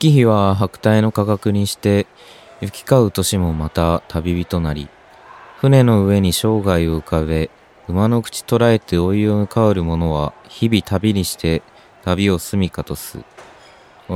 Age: 20-39